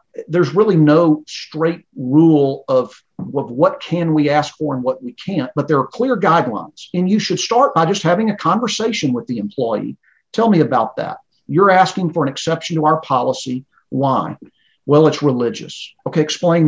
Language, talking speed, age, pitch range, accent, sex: English, 185 wpm, 50-69, 140-175 Hz, American, male